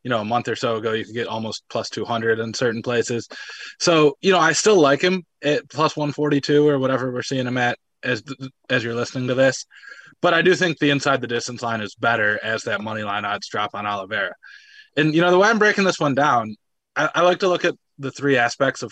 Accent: American